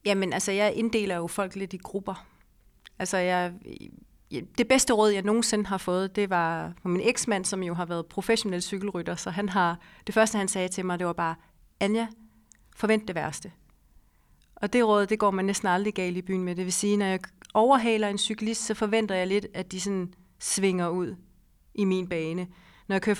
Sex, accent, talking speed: female, native, 200 wpm